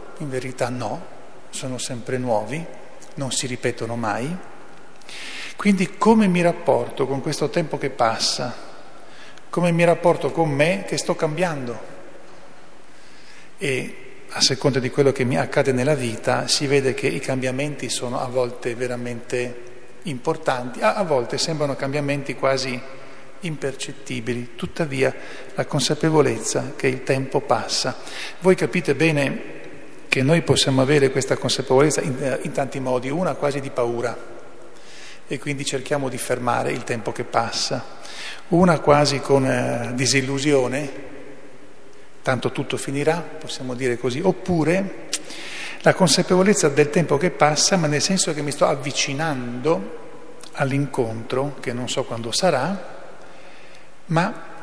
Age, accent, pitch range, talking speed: 40-59, native, 130-155 Hz, 130 wpm